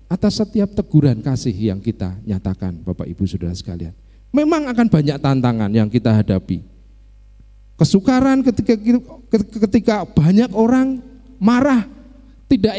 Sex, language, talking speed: male, Indonesian, 115 wpm